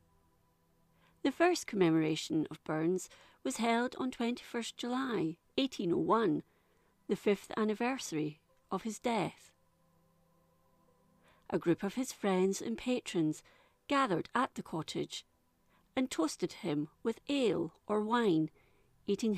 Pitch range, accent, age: 150-230 Hz, British, 40-59